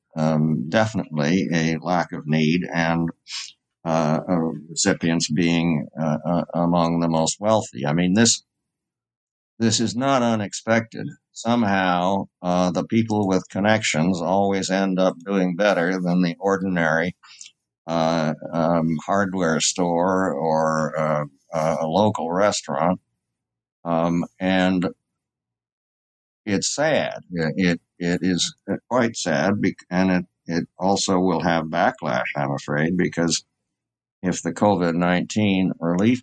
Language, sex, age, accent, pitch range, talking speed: English, male, 60-79, American, 80-100 Hz, 120 wpm